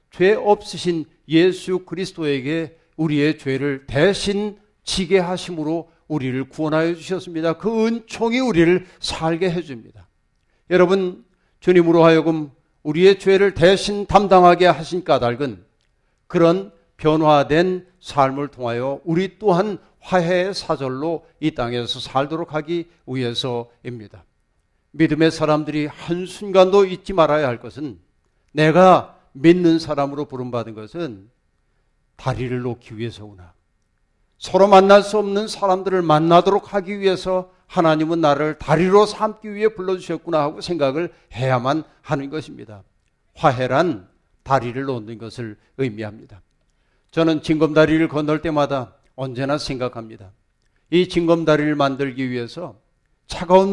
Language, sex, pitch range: Korean, male, 135-180 Hz